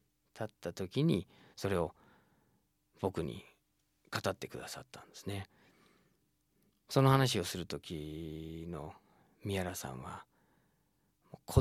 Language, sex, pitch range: Japanese, male, 90-125 Hz